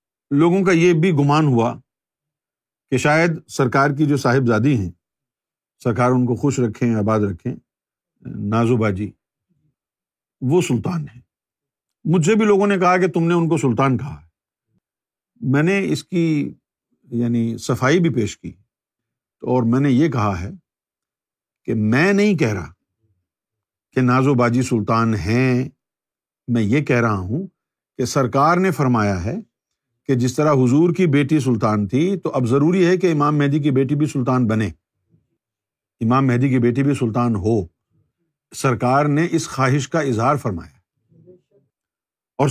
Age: 50-69